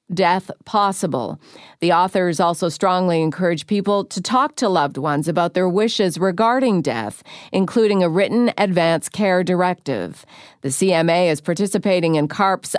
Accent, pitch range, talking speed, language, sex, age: American, 170-215 Hz, 140 wpm, English, female, 50-69